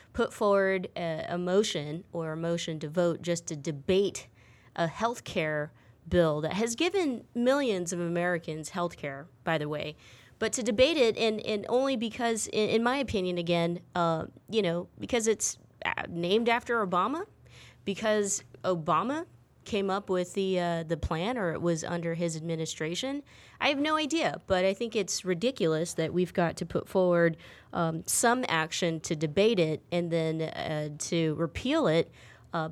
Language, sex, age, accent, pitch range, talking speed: English, female, 30-49, American, 160-220 Hz, 170 wpm